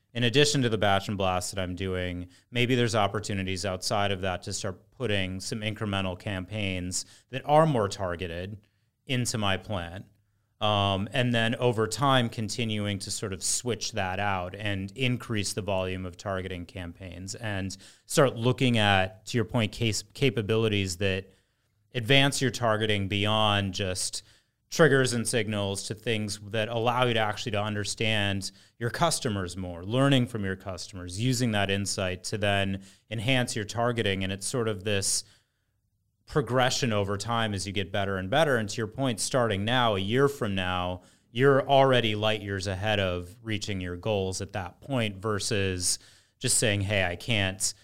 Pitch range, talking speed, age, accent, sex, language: 95-115 Hz, 165 wpm, 30-49, American, male, English